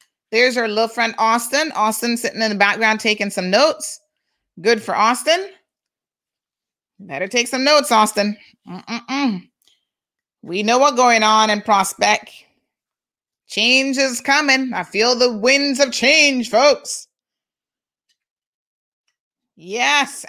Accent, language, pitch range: American, English, 215-295 Hz